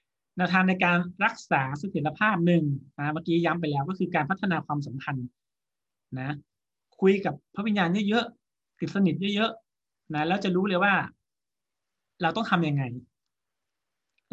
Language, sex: Thai, male